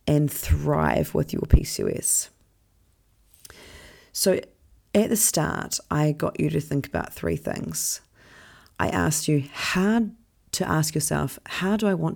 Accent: Australian